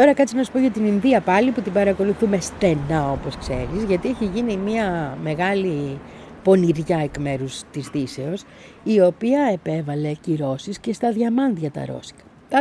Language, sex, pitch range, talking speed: Greek, female, 150-220 Hz, 165 wpm